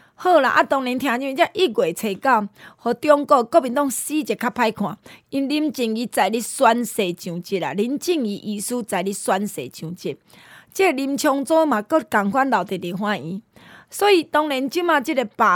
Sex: female